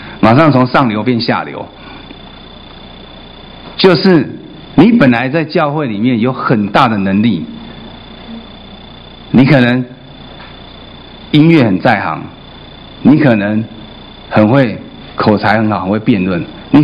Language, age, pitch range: Chinese, 50-69, 105-135 Hz